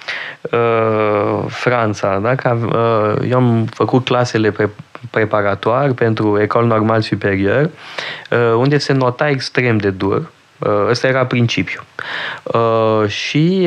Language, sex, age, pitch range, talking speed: Romanian, male, 20-39, 115-150 Hz, 120 wpm